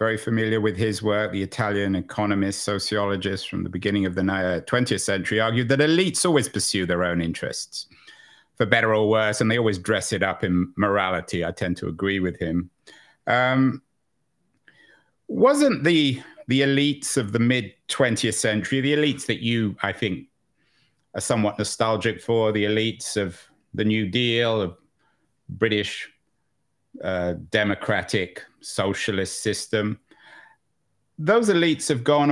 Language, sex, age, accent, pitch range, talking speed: English, male, 50-69, British, 100-145 Hz, 145 wpm